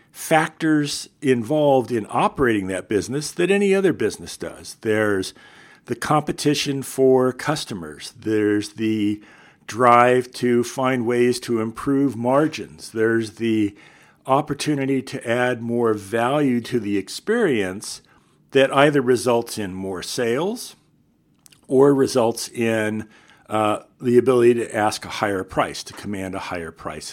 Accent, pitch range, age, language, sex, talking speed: American, 105-140 Hz, 50-69, English, male, 125 wpm